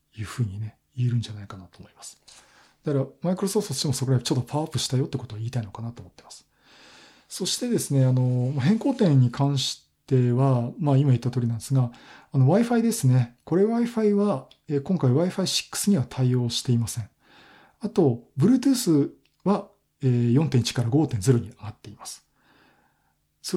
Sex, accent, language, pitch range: male, native, Japanese, 120-155 Hz